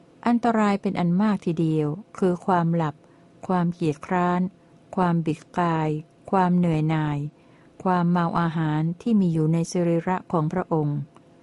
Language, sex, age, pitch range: Thai, female, 60-79, 165-195 Hz